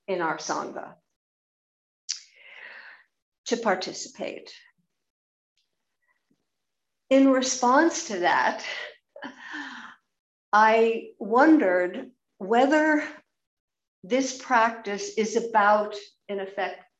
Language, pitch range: English, 200-265 Hz